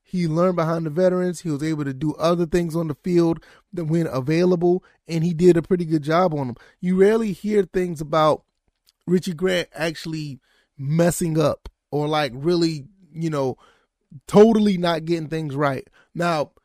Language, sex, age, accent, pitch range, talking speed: English, male, 20-39, American, 155-185 Hz, 175 wpm